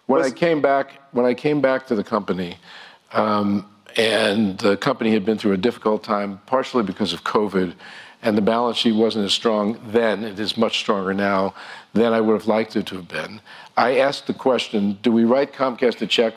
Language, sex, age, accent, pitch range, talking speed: English, male, 50-69, American, 105-125 Hz, 210 wpm